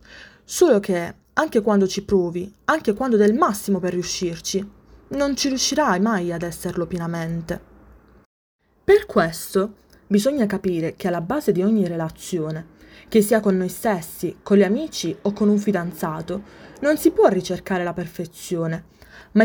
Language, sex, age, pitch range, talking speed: Italian, female, 20-39, 175-230 Hz, 150 wpm